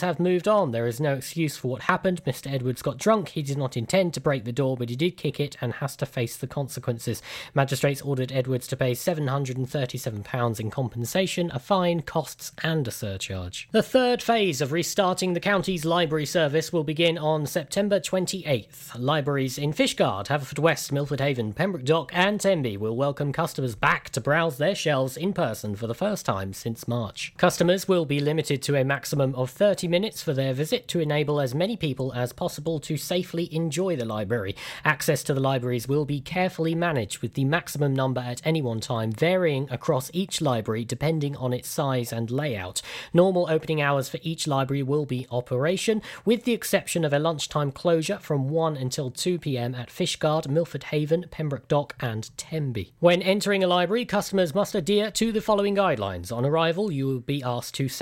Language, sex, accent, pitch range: Japanese, male, British, 130-175 Hz